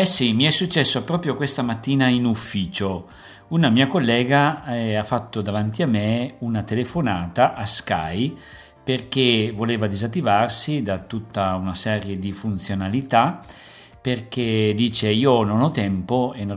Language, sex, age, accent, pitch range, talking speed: Italian, male, 50-69, native, 95-120 Hz, 145 wpm